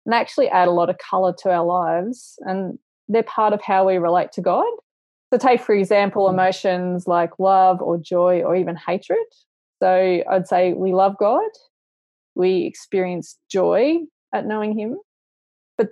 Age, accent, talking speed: 20-39, Australian, 165 wpm